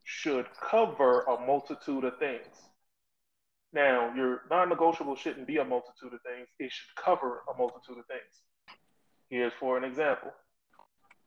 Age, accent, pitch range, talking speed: 30-49, American, 125-170 Hz, 145 wpm